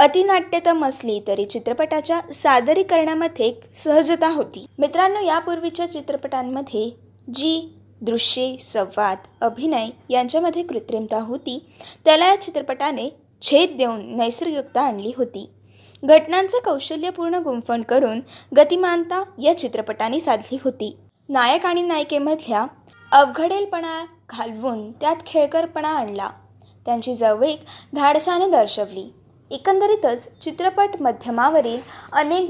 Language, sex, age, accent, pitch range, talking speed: Marathi, female, 20-39, native, 245-345 Hz, 90 wpm